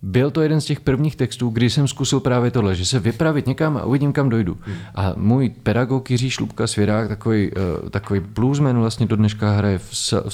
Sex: male